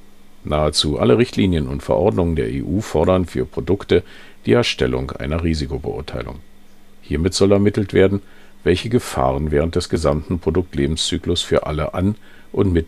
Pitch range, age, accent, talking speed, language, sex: 75-100 Hz, 50-69, German, 135 wpm, German, male